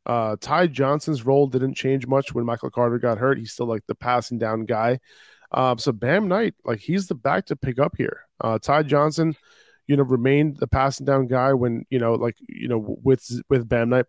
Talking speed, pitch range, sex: 215 wpm, 120-145 Hz, male